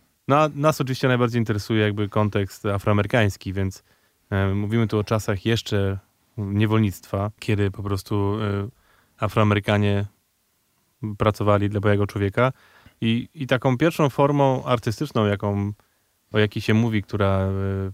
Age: 20-39